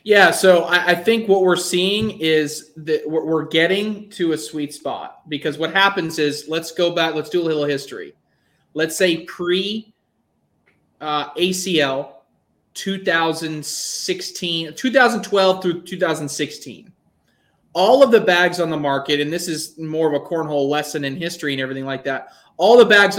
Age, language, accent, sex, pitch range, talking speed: 30-49, English, American, male, 155-195 Hz, 150 wpm